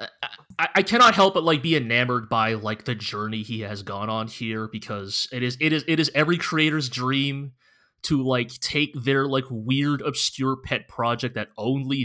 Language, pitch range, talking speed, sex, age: English, 110-145 Hz, 190 wpm, male, 20-39